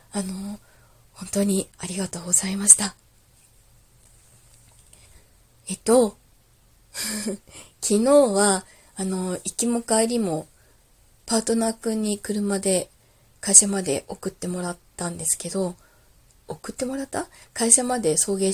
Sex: female